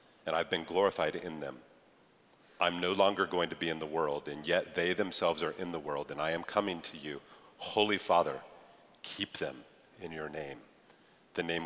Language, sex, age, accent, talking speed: English, male, 40-59, American, 195 wpm